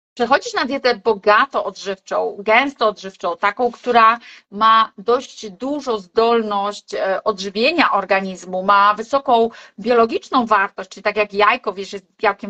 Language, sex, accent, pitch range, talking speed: Polish, female, native, 215-265 Hz, 125 wpm